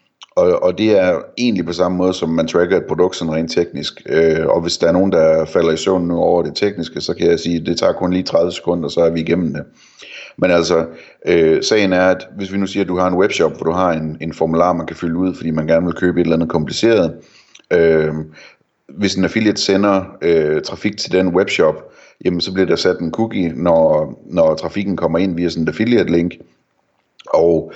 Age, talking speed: 30-49, 230 wpm